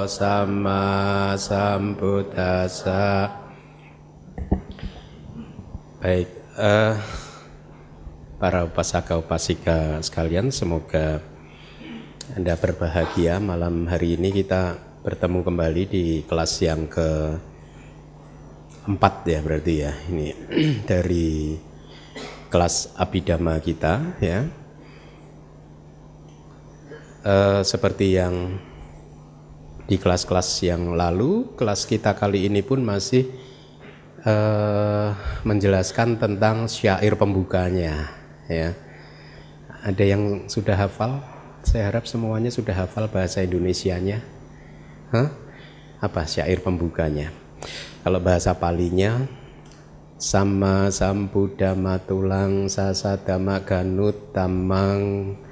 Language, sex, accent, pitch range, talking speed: Indonesian, male, native, 85-105 Hz, 85 wpm